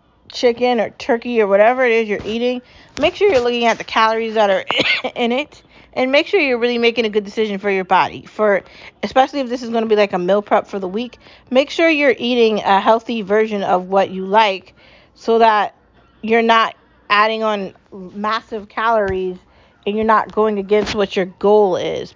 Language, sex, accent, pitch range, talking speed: English, female, American, 200-235 Hz, 205 wpm